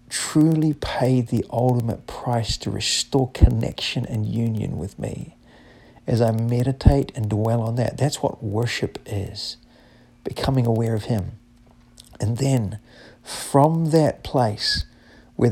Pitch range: 115-135 Hz